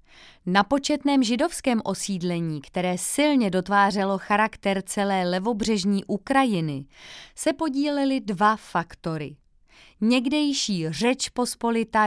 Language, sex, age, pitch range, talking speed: Czech, female, 30-49, 180-240 Hz, 90 wpm